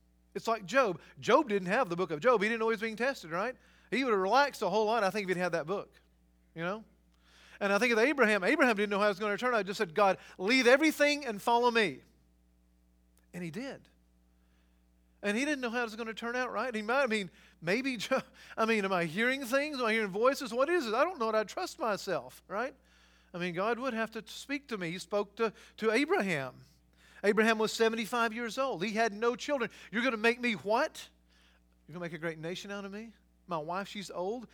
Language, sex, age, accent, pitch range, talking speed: English, male, 40-59, American, 160-230 Hz, 245 wpm